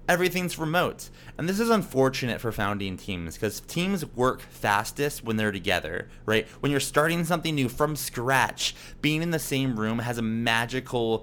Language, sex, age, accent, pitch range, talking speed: English, male, 20-39, American, 120-160 Hz, 170 wpm